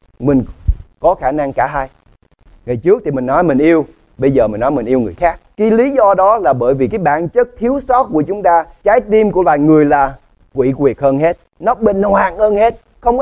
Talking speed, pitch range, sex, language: 235 wpm, 125-195 Hz, male, English